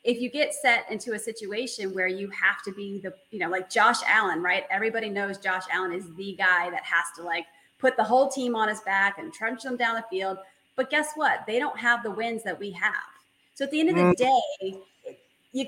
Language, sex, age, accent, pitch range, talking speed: English, female, 30-49, American, 200-275 Hz, 235 wpm